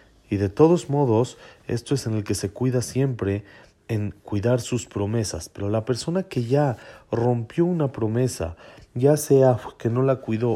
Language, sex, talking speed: Spanish, male, 170 wpm